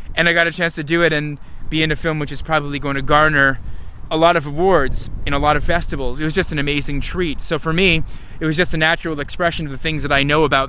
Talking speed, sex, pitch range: 280 wpm, male, 130-155 Hz